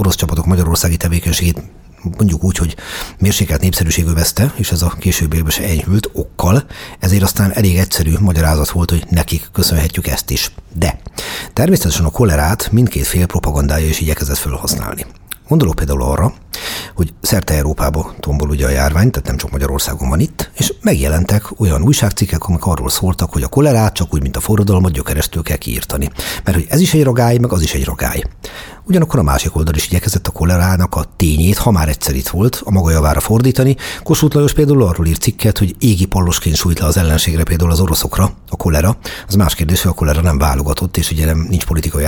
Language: Hungarian